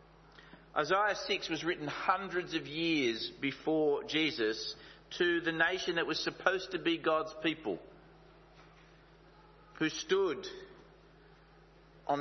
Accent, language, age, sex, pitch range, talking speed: Australian, English, 50-69, male, 145-180 Hz, 110 wpm